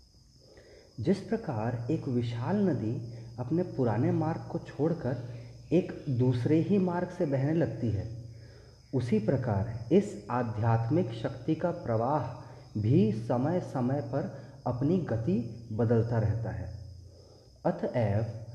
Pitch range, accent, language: 115-165 Hz, native, Hindi